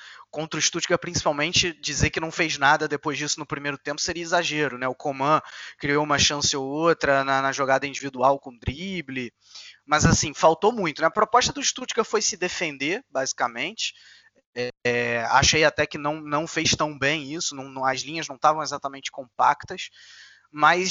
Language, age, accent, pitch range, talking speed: Portuguese, 20-39, Brazilian, 130-155 Hz, 170 wpm